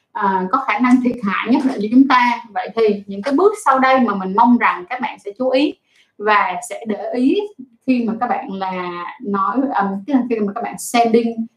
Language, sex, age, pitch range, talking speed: Vietnamese, female, 20-39, 200-260 Hz, 230 wpm